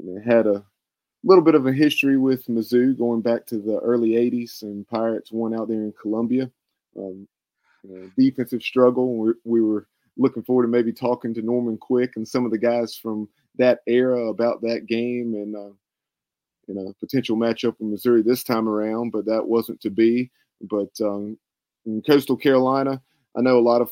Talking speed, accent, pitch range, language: 185 wpm, American, 110-125 Hz, English